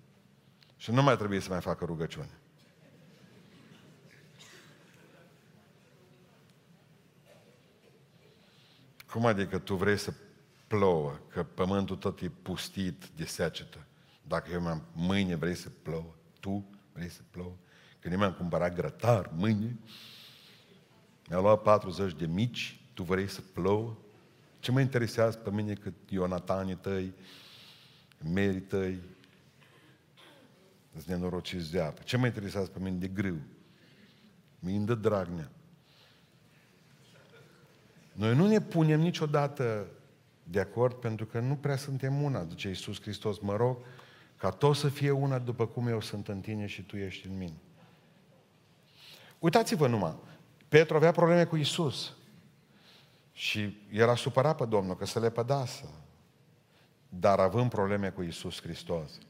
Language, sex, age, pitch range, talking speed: Romanian, male, 50-69, 95-145 Hz, 130 wpm